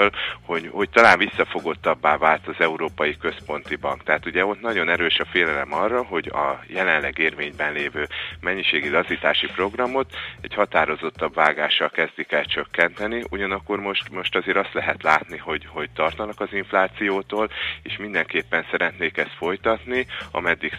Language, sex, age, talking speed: Hungarian, male, 30-49, 140 wpm